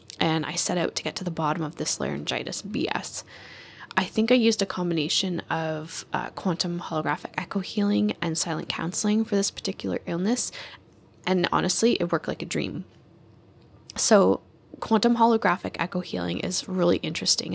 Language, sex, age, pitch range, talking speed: English, female, 10-29, 165-190 Hz, 160 wpm